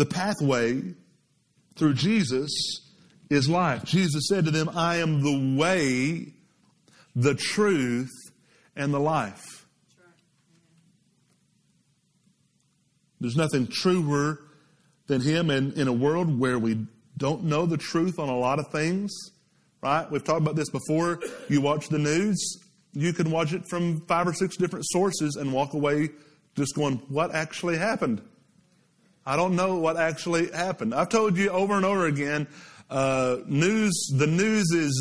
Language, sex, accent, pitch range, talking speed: English, male, American, 135-175 Hz, 145 wpm